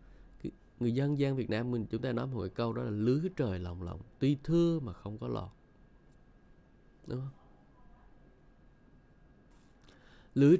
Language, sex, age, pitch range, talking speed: Vietnamese, male, 20-39, 105-130 Hz, 145 wpm